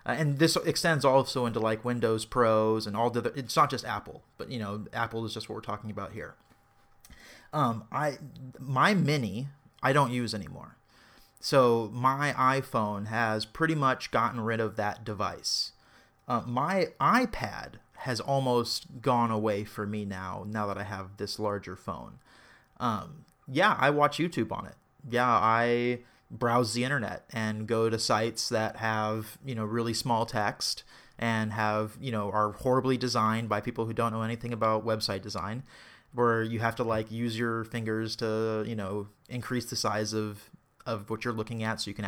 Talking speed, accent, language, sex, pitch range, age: 180 wpm, American, English, male, 110-125 Hz, 30-49